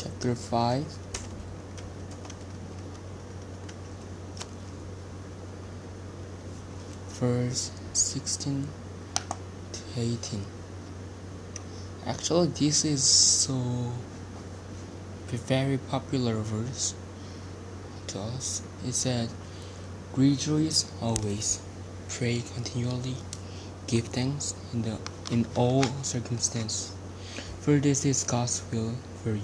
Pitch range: 95-115 Hz